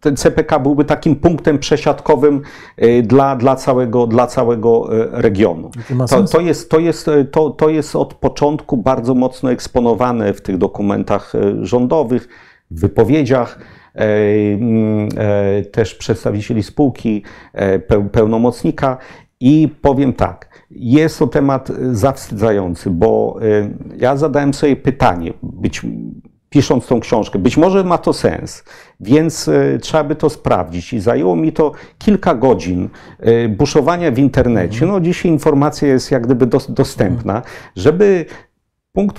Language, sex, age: Polish, male, 50-69